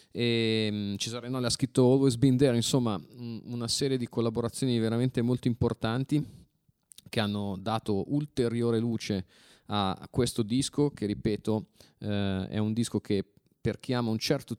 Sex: male